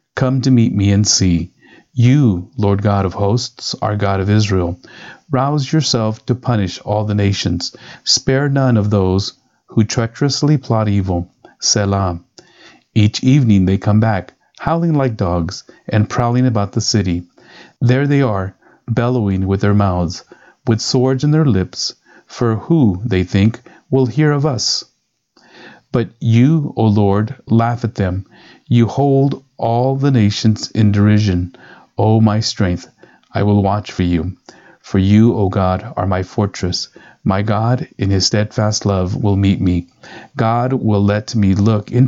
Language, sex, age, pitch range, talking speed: English, male, 40-59, 95-125 Hz, 155 wpm